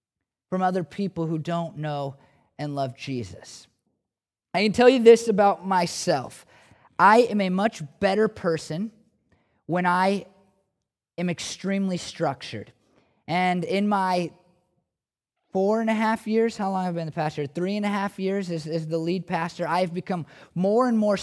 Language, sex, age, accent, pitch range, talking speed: English, male, 30-49, American, 145-190 Hz, 160 wpm